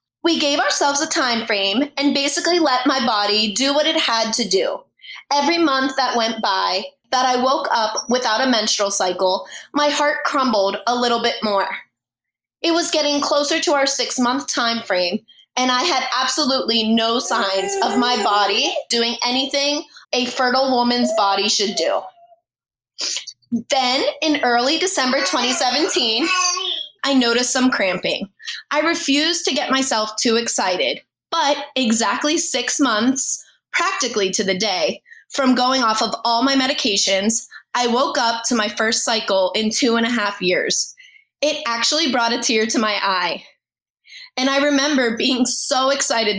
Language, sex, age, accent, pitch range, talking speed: English, female, 20-39, American, 220-285 Hz, 155 wpm